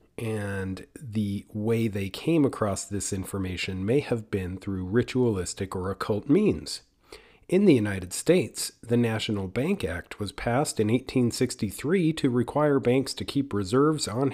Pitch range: 100-135 Hz